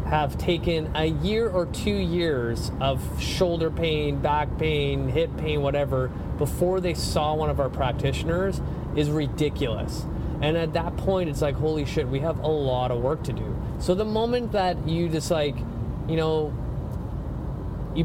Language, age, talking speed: English, 30-49, 165 wpm